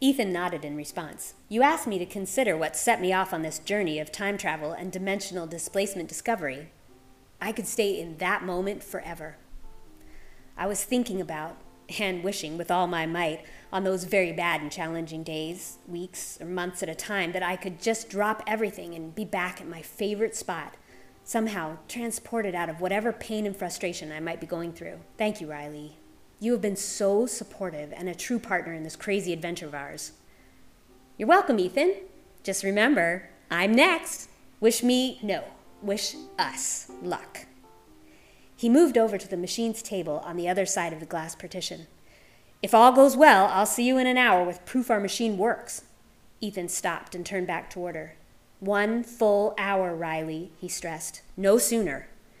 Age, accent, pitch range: 30-49, American, 165-215 Hz